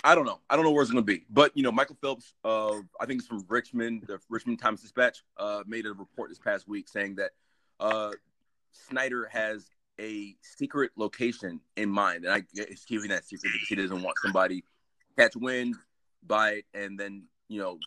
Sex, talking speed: male, 210 wpm